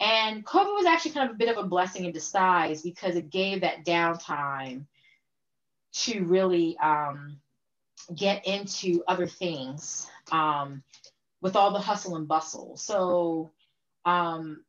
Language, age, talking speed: English, 30-49, 140 wpm